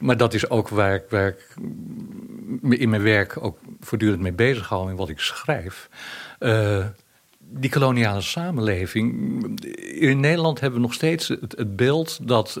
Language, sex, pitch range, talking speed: Dutch, male, 95-120 Hz, 150 wpm